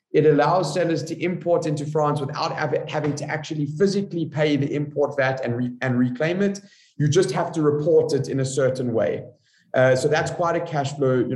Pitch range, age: 130-160 Hz, 30-49